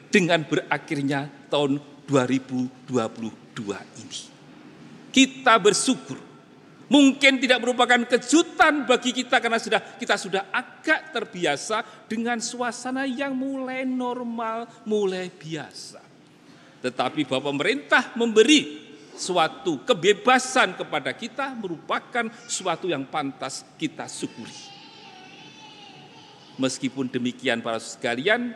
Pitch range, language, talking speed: 145-245 Hz, Indonesian, 90 wpm